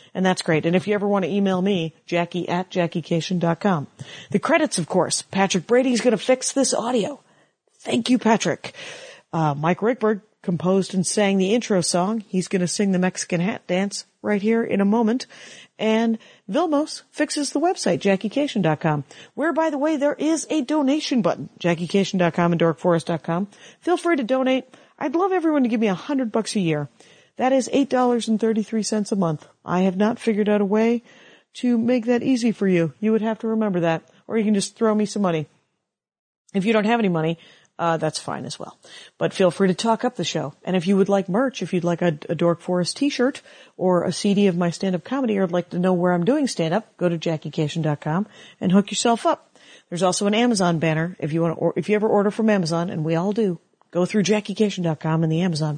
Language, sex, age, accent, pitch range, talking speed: English, female, 40-59, American, 175-235 Hz, 210 wpm